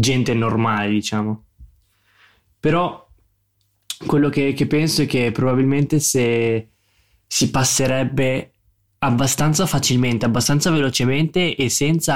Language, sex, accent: Italian, male, native